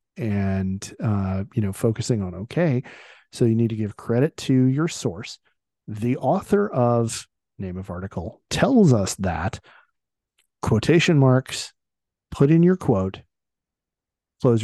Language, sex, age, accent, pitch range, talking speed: English, male, 40-59, American, 105-135 Hz, 130 wpm